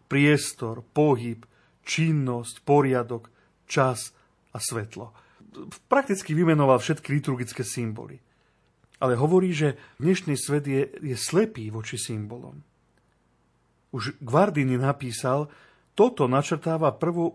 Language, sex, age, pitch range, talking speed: Slovak, male, 40-59, 120-150 Hz, 95 wpm